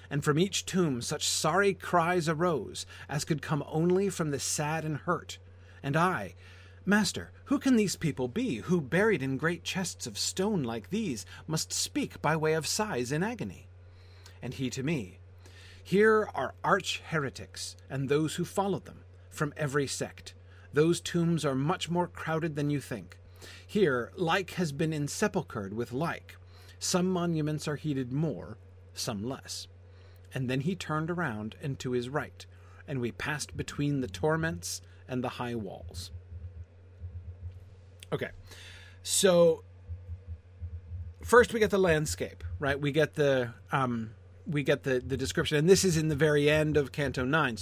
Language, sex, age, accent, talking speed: English, male, 40-59, American, 160 wpm